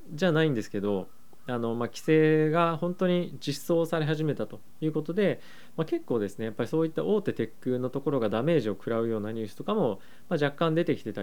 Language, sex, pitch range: Japanese, male, 115-165 Hz